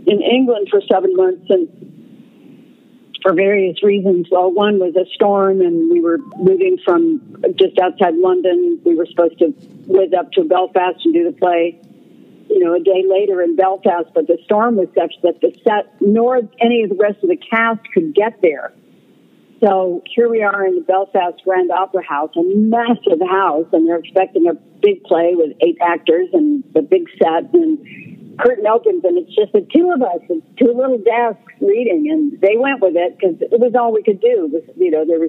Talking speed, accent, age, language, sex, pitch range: 195 wpm, American, 50-69, English, female, 180-250 Hz